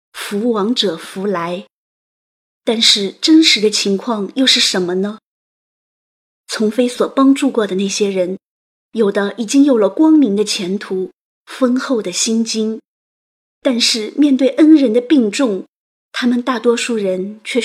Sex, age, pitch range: female, 20-39, 200-255 Hz